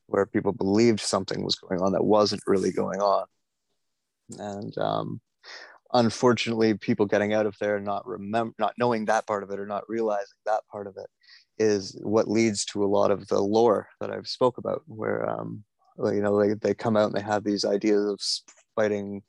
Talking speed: 200 wpm